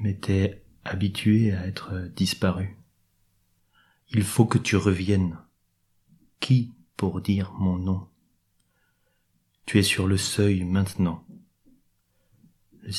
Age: 30-49